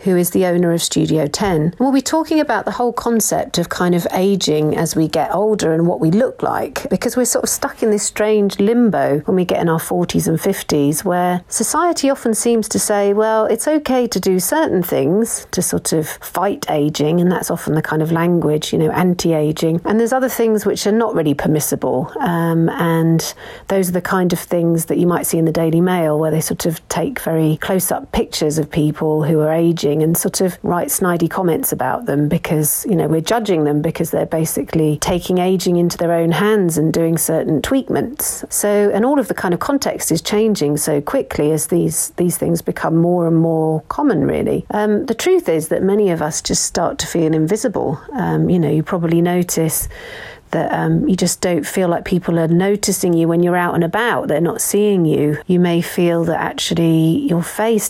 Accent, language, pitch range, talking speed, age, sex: British, English, 160-205 Hz, 210 wpm, 40-59, female